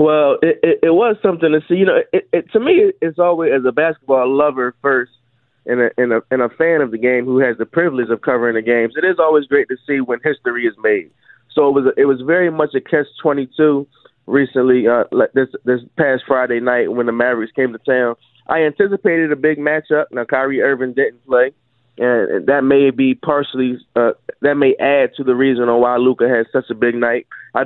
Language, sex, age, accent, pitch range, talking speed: English, male, 20-39, American, 125-150 Hz, 210 wpm